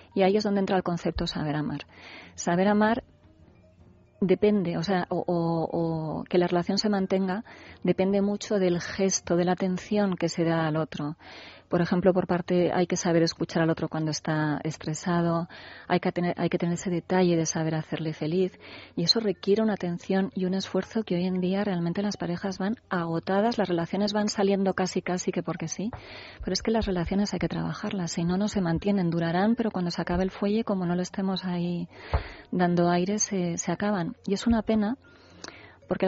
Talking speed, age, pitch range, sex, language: 200 wpm, 30-49, 165-195 Hz, female, Spanish